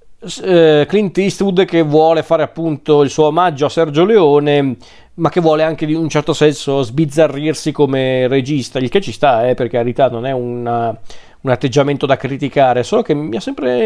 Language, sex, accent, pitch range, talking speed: Italian, male, native, 125-150 Hz, 185 wpm